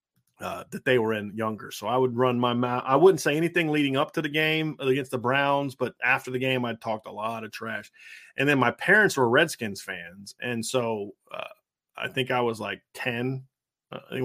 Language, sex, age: English, male, 30-49